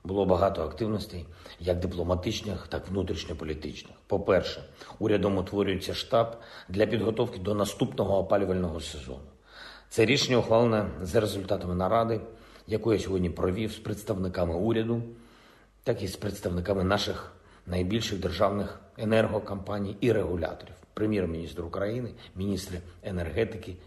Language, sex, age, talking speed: Ukrainian, male, 50-69, 115 wpm